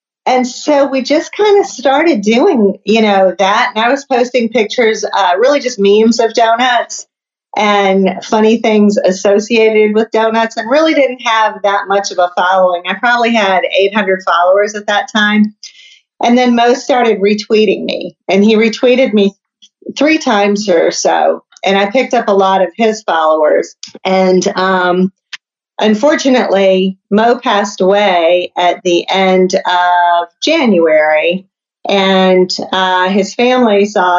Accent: American